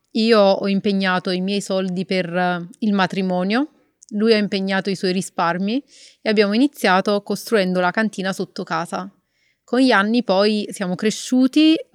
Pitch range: 185-225 Hz